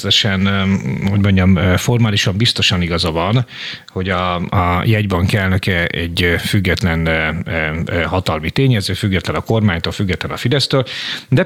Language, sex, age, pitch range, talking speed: Hungarian, male, 40-59, 90-110 Hz, 115 wpm